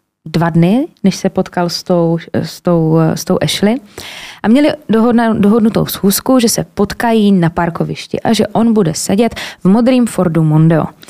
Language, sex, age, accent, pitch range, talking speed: Czech, female, 20-39, native, 170-235 Hz, 160 wpm